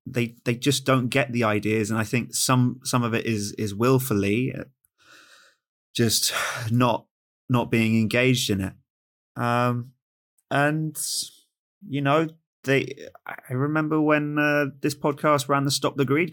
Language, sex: English, male